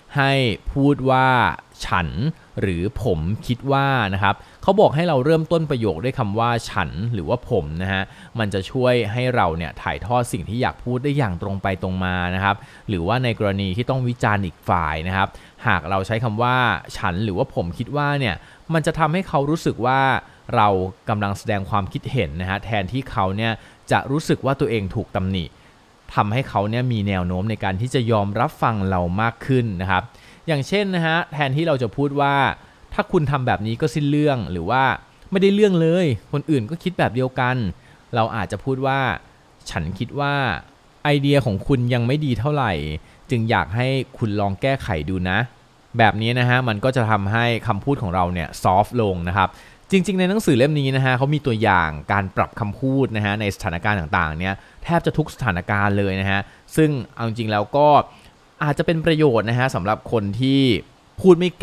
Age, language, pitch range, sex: 20-39, Thai, 100-135 Hz, male